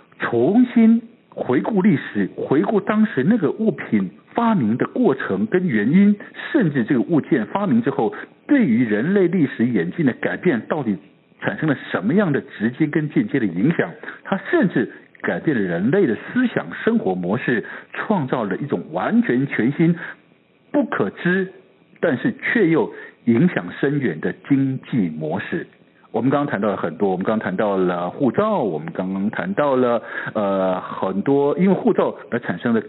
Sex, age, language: male, 60-79, Chinese